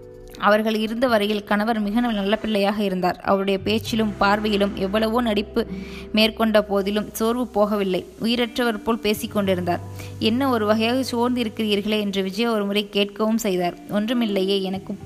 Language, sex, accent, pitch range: Tamil, female, native, 200-225 Hz